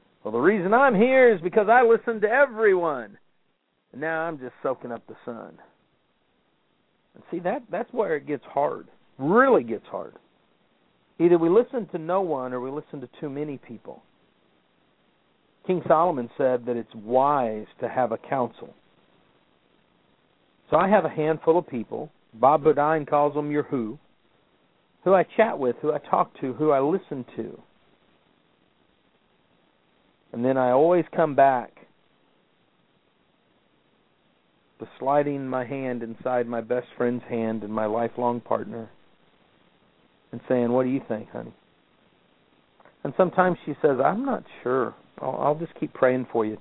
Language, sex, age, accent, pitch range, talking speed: English, male, 50-69, American, 120-165 Hz, 150 wpm